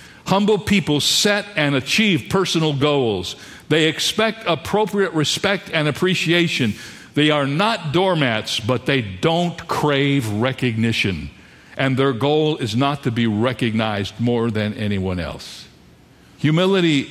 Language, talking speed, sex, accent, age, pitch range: English, 125 wpm, male, American, 60-79, 115-170 Hz